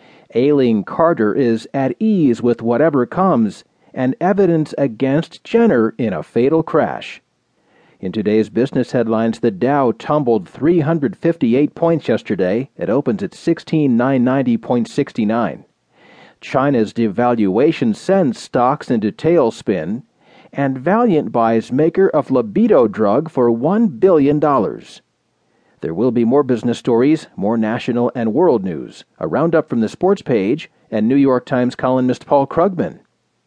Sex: male